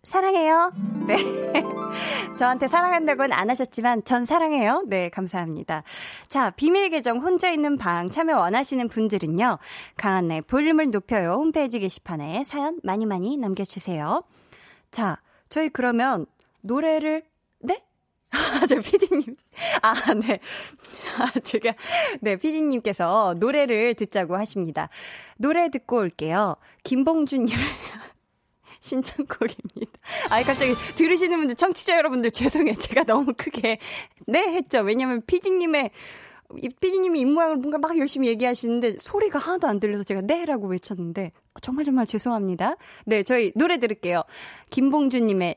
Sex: female